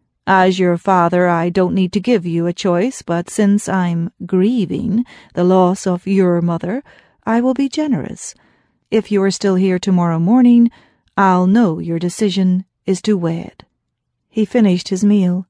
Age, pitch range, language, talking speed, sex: 40-59, 175-205 Hz, English, 165 wpm, female